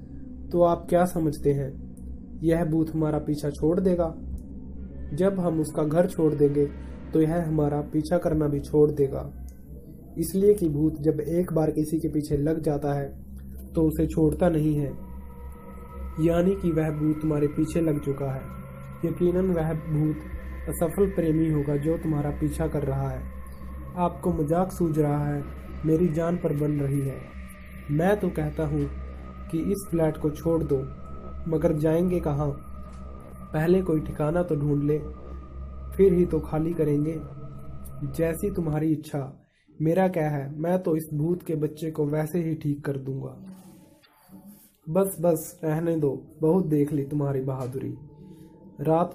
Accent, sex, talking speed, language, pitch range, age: native, male, 155 wpm, Hindi, 140-165 Hz, 20-39